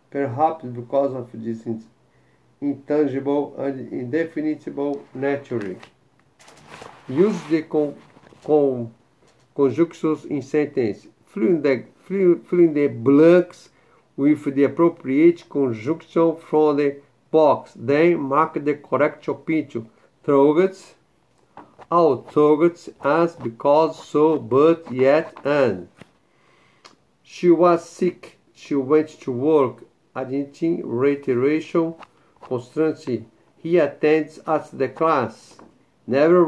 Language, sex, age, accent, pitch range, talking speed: English, male, 50-69, Brazilian, 135-160 Hz, 95 wpm